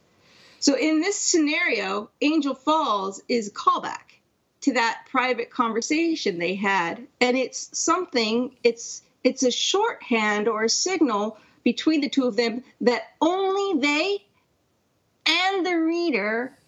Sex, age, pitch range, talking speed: female, 40-59, 240-310 Hz, 125 wpm